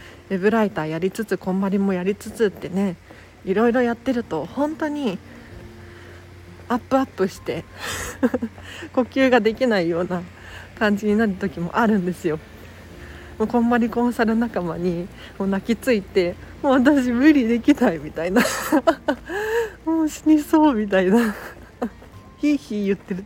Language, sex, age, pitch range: Japanese, female, 40-59, 180-275 Hz